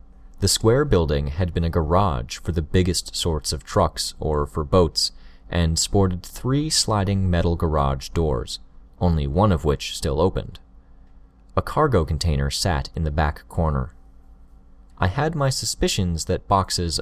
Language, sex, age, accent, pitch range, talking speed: English, male, 30-49, American, 70-100 Hz, 150 wpm